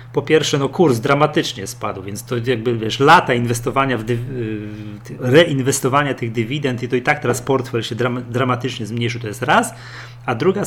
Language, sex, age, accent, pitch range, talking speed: Polish, male, 30-49, native, 120-140 Hz, 185 wpm